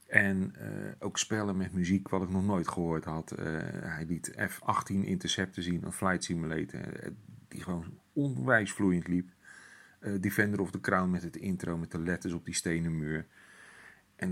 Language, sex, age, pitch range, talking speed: Dutch, male, 40-59, 85-100 Hz, 175 wpm